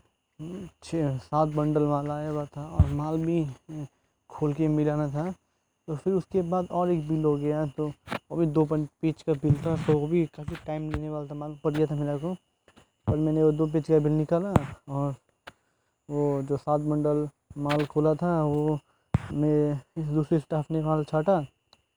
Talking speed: 185 wpm